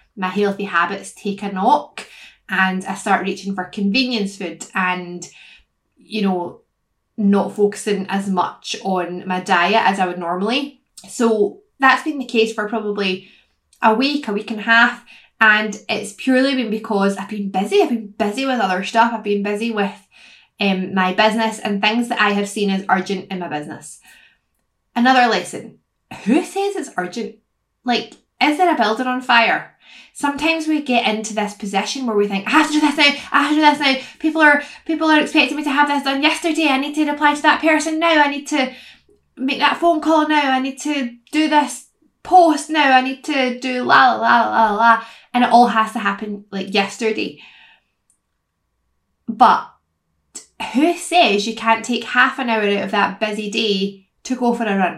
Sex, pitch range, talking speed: female, 200-275 Hz, 195 wpm